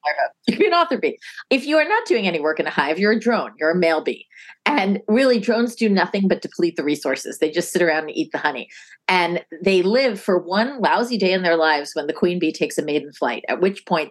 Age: 30-49